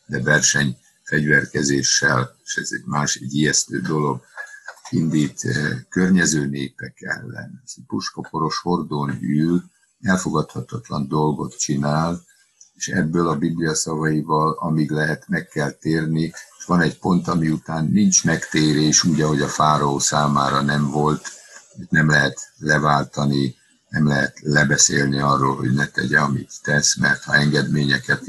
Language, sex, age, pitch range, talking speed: Hungarian, male, 60-79, 70-75 Hz, 130 wpm